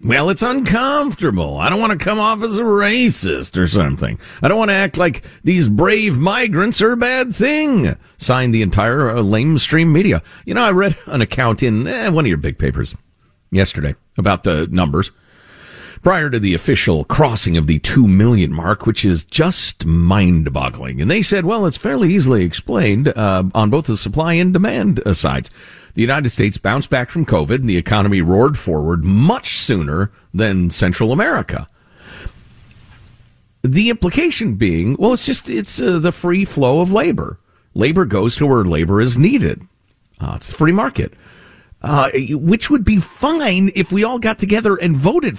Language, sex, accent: English, male, American